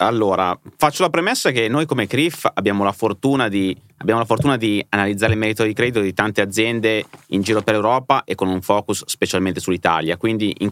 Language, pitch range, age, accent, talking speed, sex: Italian, 95-120 Hz, 30-49, native, 200 wpm, male